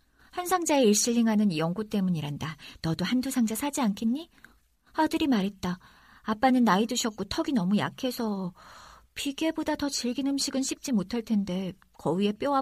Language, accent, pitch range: Korean, native, 200-285 Hz